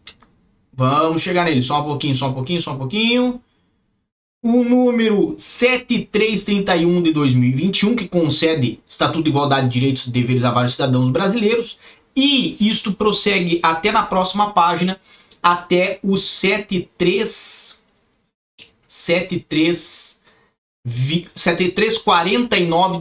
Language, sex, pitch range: Portuguese, male, 155-210 Hz